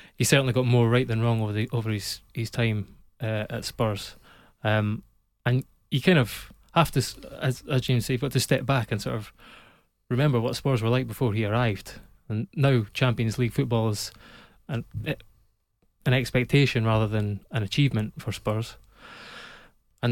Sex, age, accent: male, 20-39, British